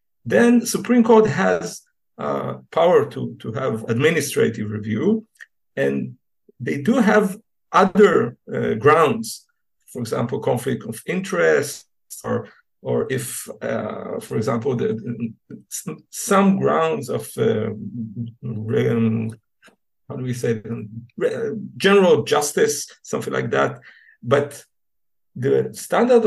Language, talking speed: English, 105 wpm